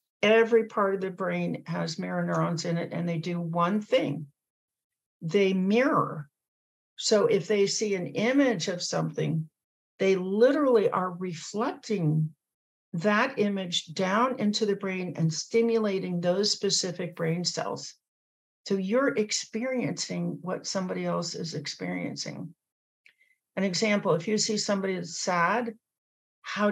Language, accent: English, American